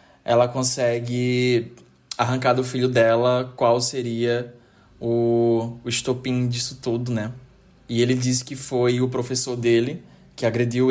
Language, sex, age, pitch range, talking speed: Portuguese, male, 20-39, 115-130 Hz, 130 wpm